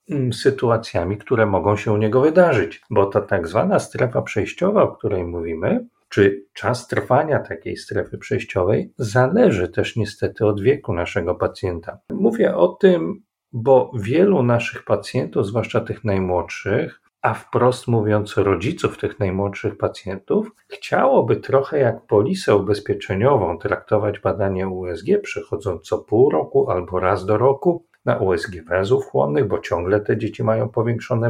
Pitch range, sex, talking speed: 100-135 Hz, male, 140 wpm